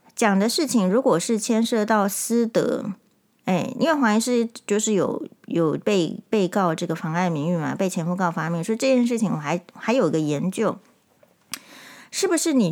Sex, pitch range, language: female, 180-235 Hz, Chinese